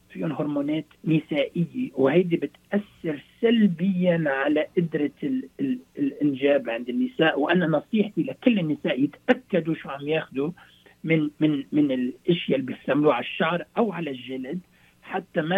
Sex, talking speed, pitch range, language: male, 120 wpm, 135-200 Hz, Arabic